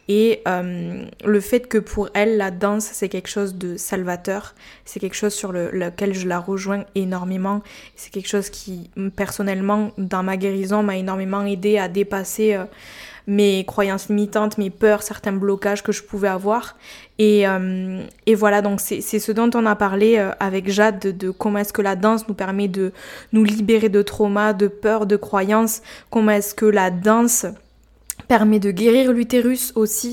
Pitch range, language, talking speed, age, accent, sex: 200-220 Hz, French, 185 wpm, 20-39, French, female